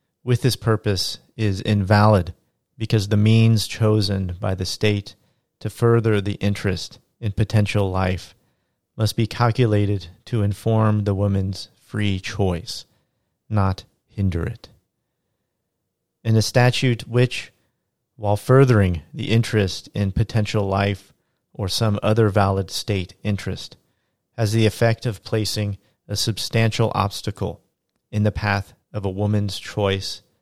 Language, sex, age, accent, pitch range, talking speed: English, male, 40-59, American, 95-110 Hz, 125 wpm